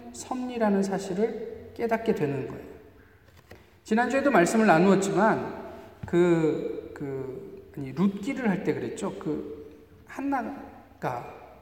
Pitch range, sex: 155-230 Hz, male